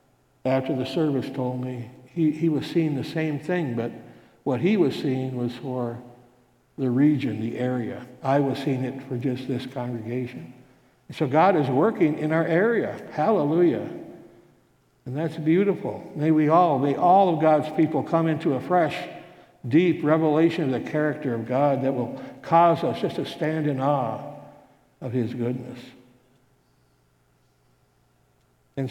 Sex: male